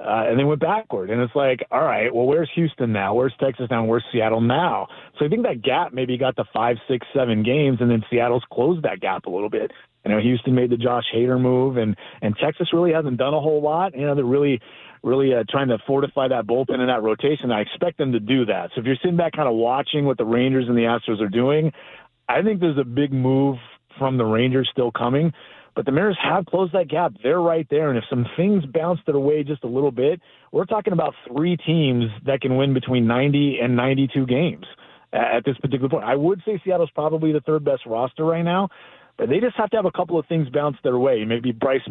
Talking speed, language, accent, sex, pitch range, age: 240 wpm, English, American, male, 120-155 Hz, 30-49